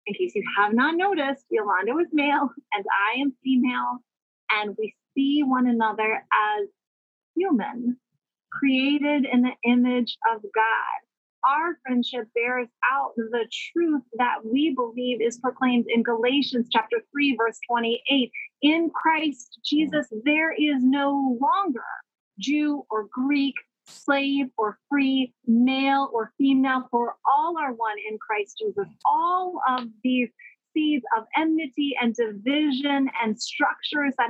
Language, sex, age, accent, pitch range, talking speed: English, female, 30-49, American, 235-290 Hz, 135 wpm